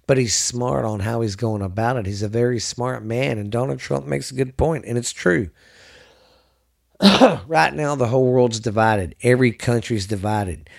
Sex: male